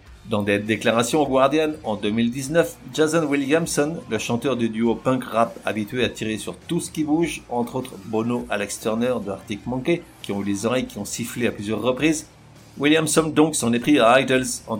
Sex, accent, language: male, French, French